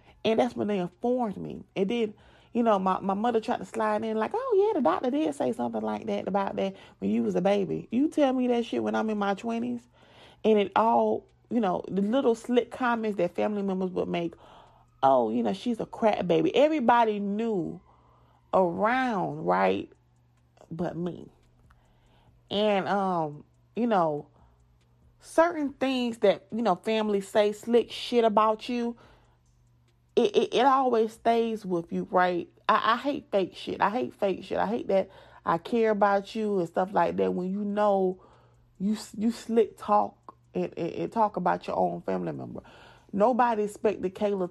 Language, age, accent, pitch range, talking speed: English, 30-49, American, 135-225 Hz, 180 wpm